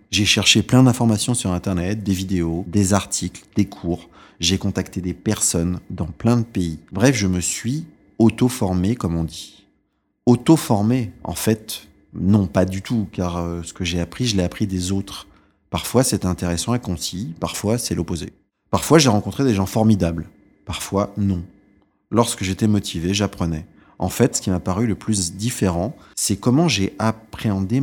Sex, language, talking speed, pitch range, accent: male, French, 170 wpm, 90-110 Hz, French